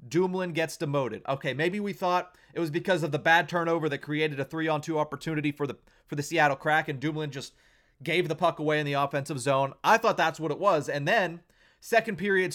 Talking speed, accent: 220 wpm, American